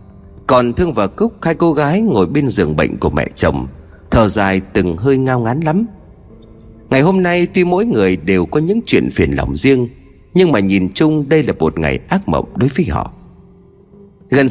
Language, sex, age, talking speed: Vietnamese, male, 30-49, 200 wpm